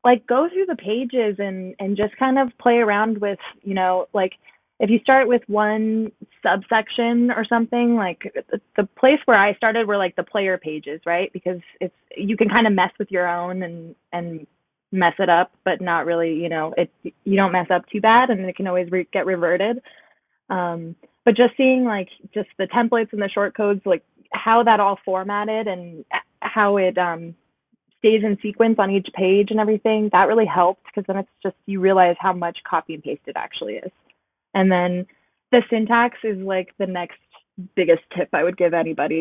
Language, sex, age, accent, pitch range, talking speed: English, female, 20-39, American, 175-215 Hz, 195 wpm